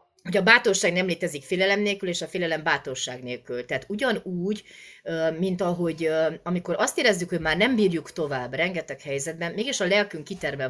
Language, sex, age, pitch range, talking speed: Hungarian, female, 30-49, 145-195 Hz, 170 wpm